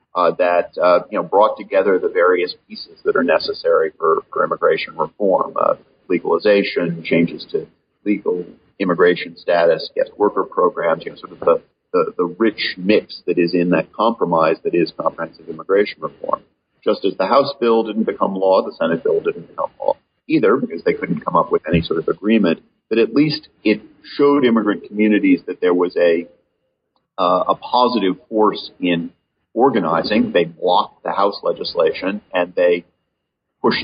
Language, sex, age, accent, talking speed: English, male, 40-59, American, 170 wpm